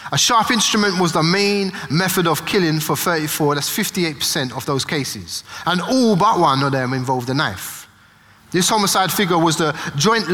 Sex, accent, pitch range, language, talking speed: male, British, 130-195 Hz, English, 180 wpm